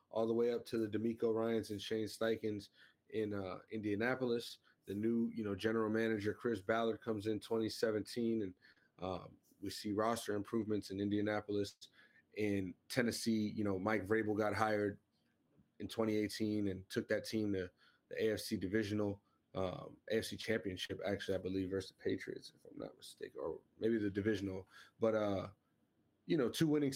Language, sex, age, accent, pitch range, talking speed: English, male, 30-49, American, 100-115 Hz, 165 wpm